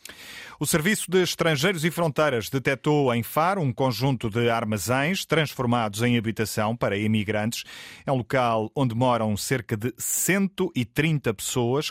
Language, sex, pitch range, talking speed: Portuguese, male, 105-135 Hz, 135 wpm